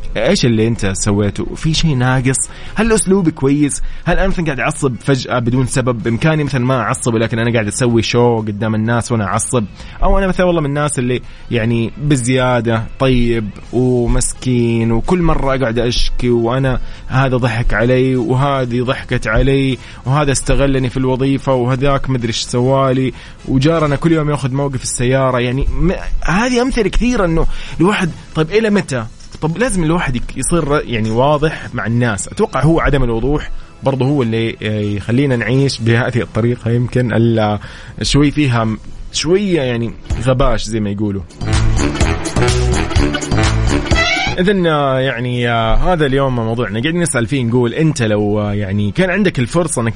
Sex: male